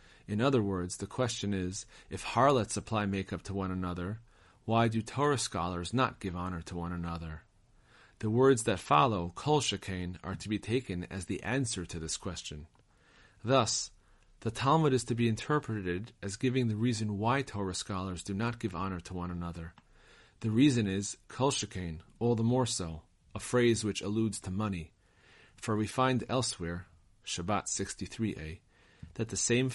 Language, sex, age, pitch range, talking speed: English, male, 40-59, 90-115 Hz, 165 wpm